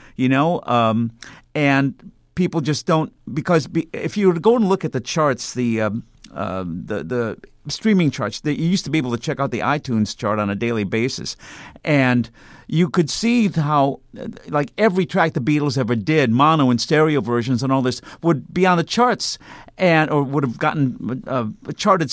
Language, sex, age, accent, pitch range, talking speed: English, male, 50-69, American, 125-185 Hz, 200 wpm